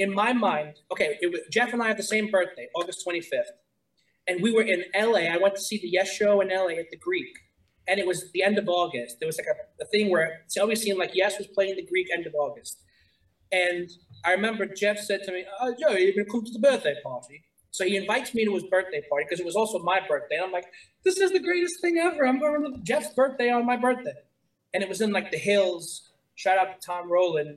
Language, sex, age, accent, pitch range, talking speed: English, male, 30-49, American, 175-220 Hz, 260 wpm